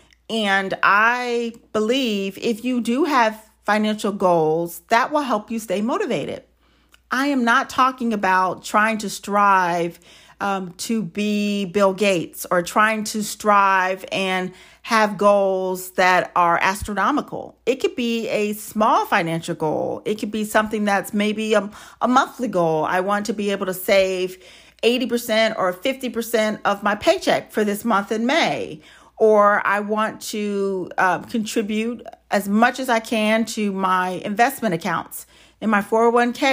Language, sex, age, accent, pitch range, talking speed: English, female, 40-59, American, 195-235 Hz, 150 wpm